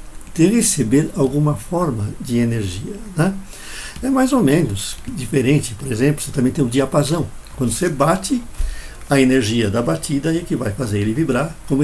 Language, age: Portuguese, 60-79